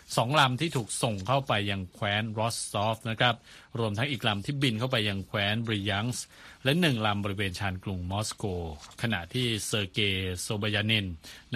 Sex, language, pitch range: male, Thai, 100-125 Hz